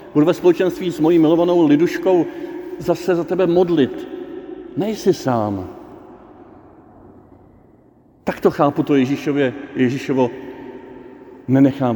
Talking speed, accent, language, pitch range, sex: 100 wpm, native, Czech, 130-170 Hz, male